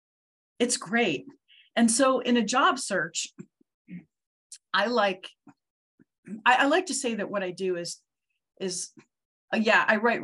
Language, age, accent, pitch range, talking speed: English, 40-59, American, 170-260 Hz, 135 wpm